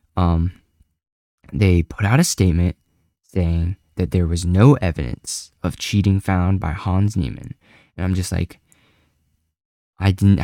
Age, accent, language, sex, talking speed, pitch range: 10-29, American, English, male, 140 wpm, 80-100 Hz